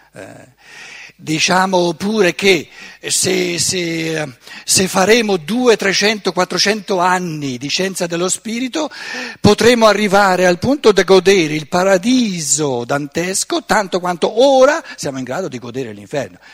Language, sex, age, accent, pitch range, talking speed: Italian, male, 60-79, native, 140-200 Hz, 125 wpm